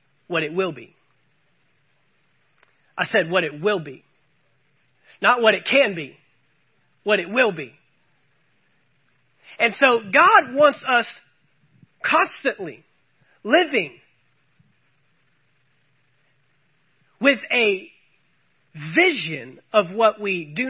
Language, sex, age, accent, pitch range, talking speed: English, male, 40-59, American, 155-230 Hz, 95 wpm